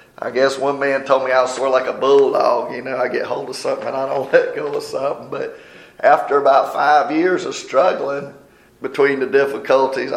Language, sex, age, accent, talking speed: English, male, 40-59, American, 220 wpm